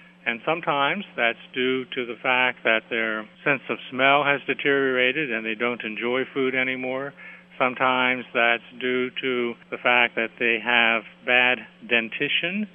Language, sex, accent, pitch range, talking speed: English, male, American, 120-140 Hz, 145 wpm